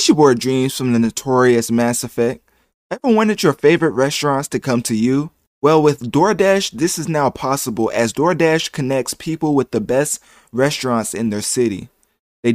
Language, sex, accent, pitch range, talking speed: English, male, American, 120-150 Hz, 170 wpm